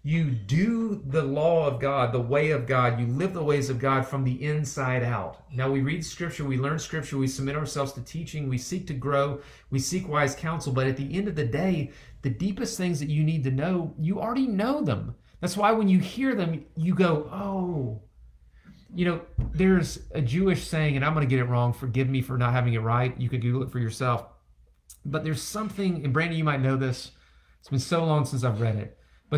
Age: 40-59